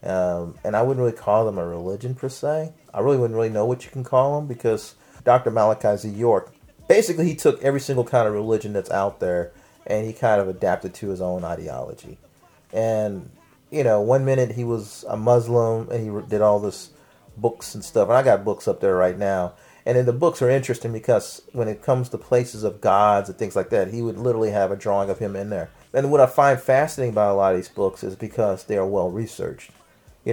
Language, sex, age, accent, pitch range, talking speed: English, male, 40-59, American, 100-125 Hz, 230 wpm